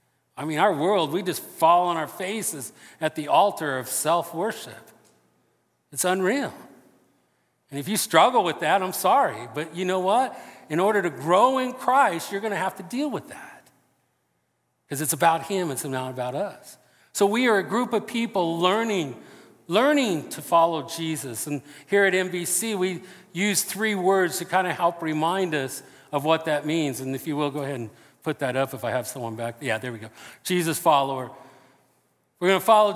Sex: male